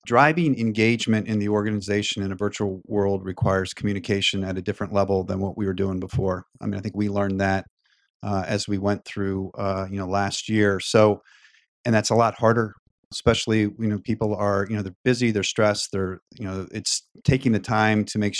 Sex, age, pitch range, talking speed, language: male, 40-59, 100-115 Hz, 210 wpm, English